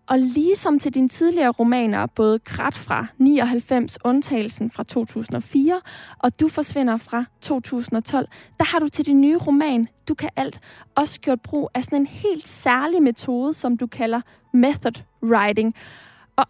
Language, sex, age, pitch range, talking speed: Danish, female, 20-39, 235-285 Hz, 155 wpm